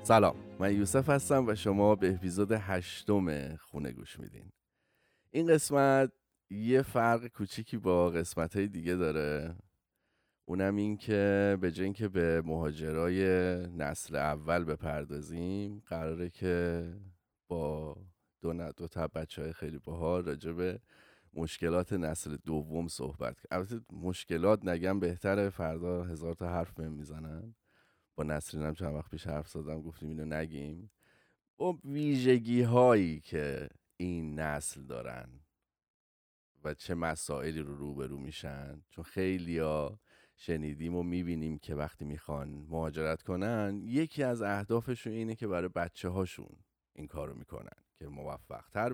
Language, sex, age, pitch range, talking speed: Persian, male, 30-49, 75-100 Hz, 125 wpm